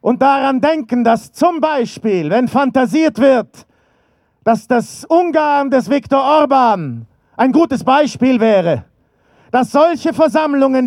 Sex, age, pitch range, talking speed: male, 50-69, 230-280 Hz, 120 wpm